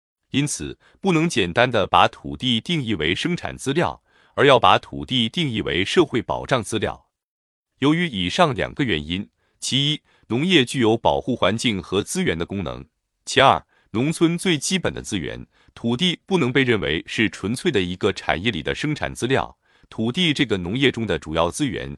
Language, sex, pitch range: Chinese, male, 100-150 Hz